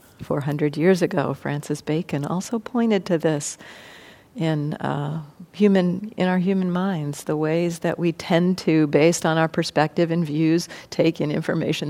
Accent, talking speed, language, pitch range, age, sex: American, 160 wpm, English, 160-190 Hz, 50-69, female